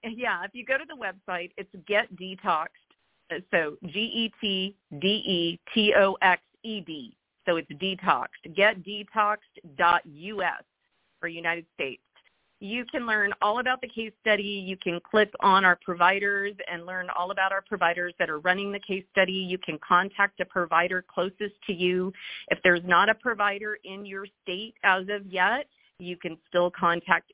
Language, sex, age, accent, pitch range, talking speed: English, female, 40-59, American, 165-200 Hz, 150 wpm